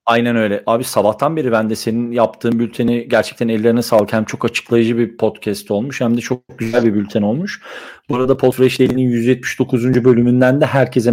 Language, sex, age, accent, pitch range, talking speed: Turkish, male, 40-59, native, 115-135 Hz, 175 wpm